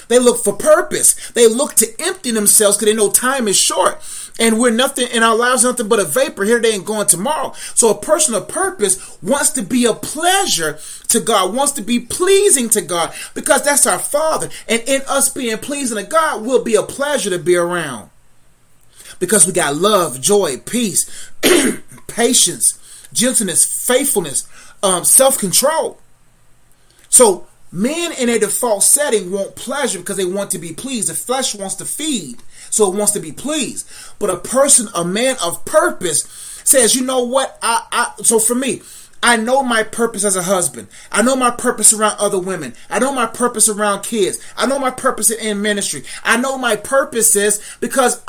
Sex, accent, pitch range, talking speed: male, American, 200-260 Hz, 185 wpm